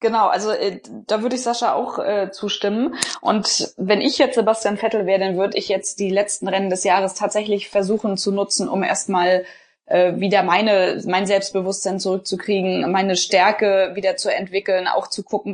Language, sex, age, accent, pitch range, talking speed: German, female, 20-39, German, 185-215 Hz, 175 wpm